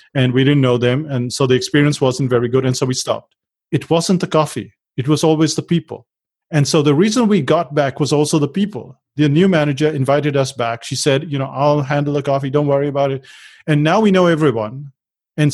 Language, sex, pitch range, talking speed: English, male, 130-160 Hz, 230 wpm